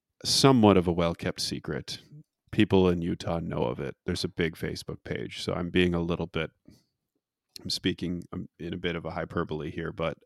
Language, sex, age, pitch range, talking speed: English, male, 30-49, 85-95 Hz, 185 wpm